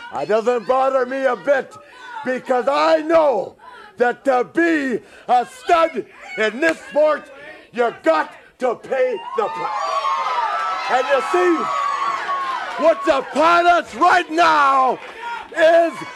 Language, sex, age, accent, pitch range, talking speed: English, male, 60-79, American, 260-355 Hz, 120 wpm